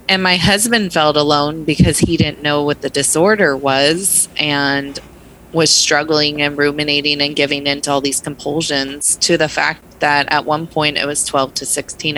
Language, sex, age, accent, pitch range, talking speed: English, female, 20-39, American, 145-170 Hz, 175 wpm